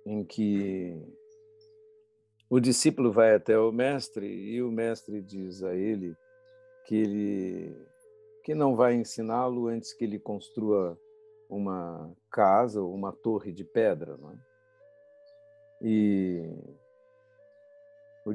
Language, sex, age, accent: Portuguese, male, 50-69, Brazilian